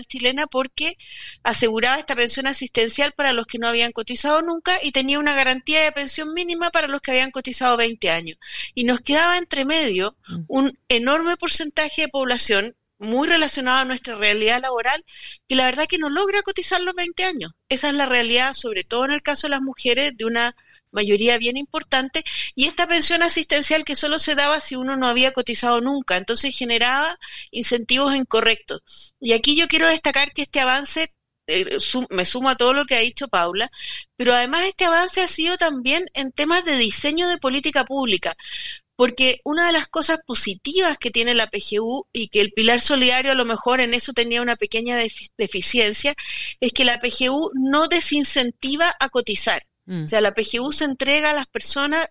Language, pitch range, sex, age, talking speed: Spanish, 240-300 Hz, female, 40-59, 185 wpm